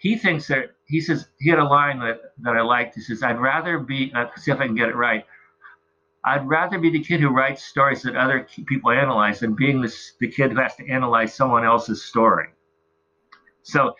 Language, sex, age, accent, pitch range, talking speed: English, male, 50-69, American, 110-140 Hz, 220 wpm